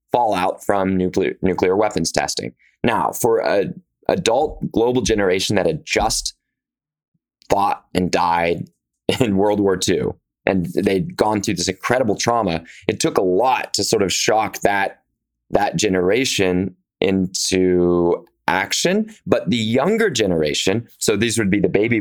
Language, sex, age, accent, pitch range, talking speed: English, male, 20-39, American, 90-115 Hz, 140 wpm